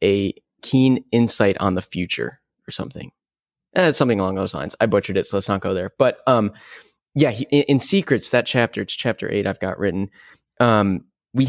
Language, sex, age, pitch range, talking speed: English, male, 20-39, 95-130 Hz, 195 wpm